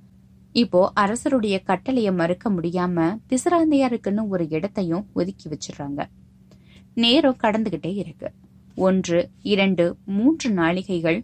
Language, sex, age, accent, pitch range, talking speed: Tamil, female, 20-39, native, 170-245 Hz, 60 wpm